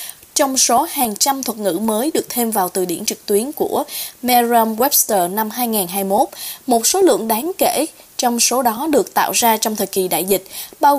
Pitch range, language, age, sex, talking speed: 225-295 Hz, Vietnamese, 20-39, female, 195 wpm